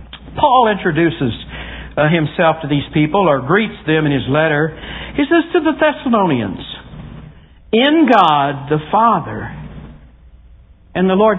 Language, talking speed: English, 125 wpm